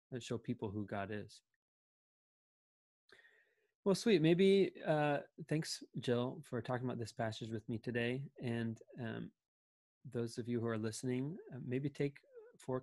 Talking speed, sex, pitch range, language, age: 150 wpm, male, 110-140 Hz, English, 30-49